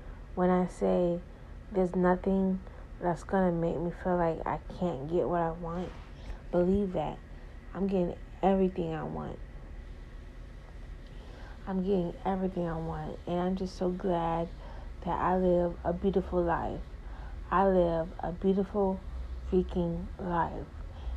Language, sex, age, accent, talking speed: English, female, 30-49, American, 130 wpm